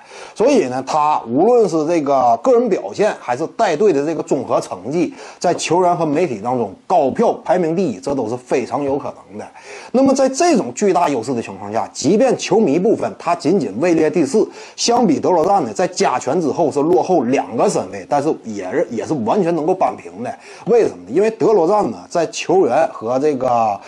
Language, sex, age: Chinese, male, 30-49